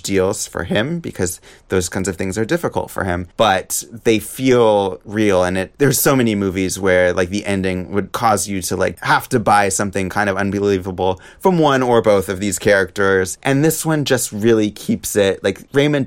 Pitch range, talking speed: 95-115 Hz, 200 wpm